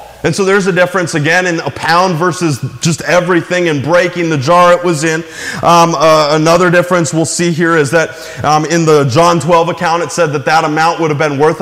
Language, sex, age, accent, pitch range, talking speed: English, male, 30-49, American, 150-180 Hz, 220 wpm